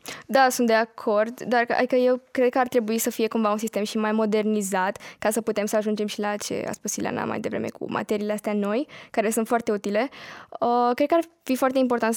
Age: 10-29